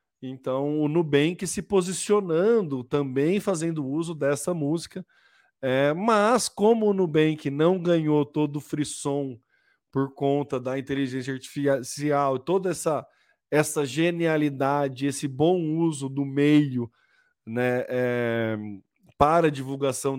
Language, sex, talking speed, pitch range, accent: Portuguese, male, 115 wpm, 135-180 Hz, Brazilian